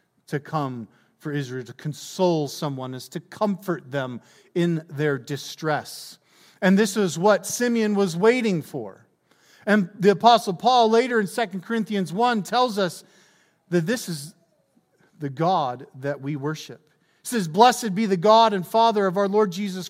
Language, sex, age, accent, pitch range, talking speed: English, male, 50-69, American, 150-215 Hz, 160 wpm